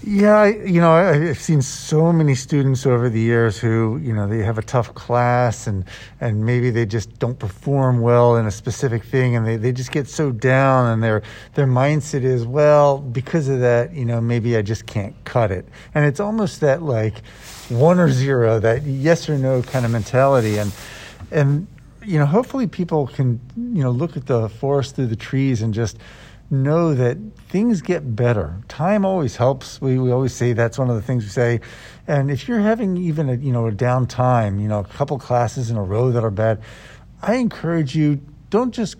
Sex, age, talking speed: male, 50-69, 210 wpm